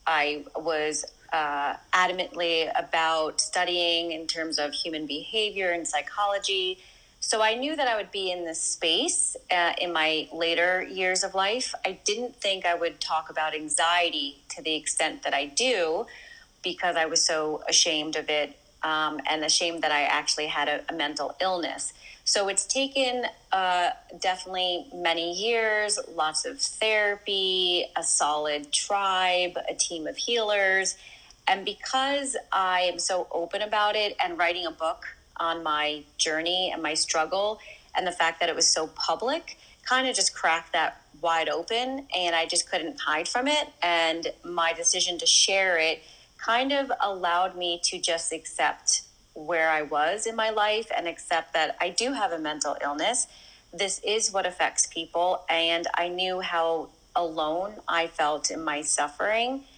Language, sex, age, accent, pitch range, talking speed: English, female, 30-49, American, 160-195 Hz, 165 wpm